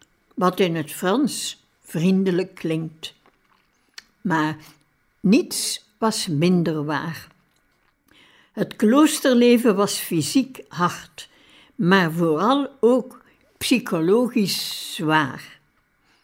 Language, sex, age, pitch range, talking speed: Dutch, female, 60-79, 180-245 Hz, 80 wpm